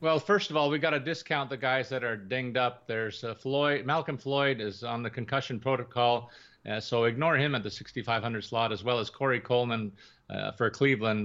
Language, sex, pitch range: English, male, 115-145 Hz